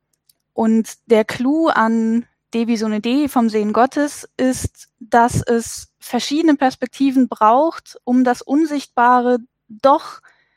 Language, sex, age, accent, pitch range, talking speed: German, female, 10-29, German, 230-270 Hz, 120 wpm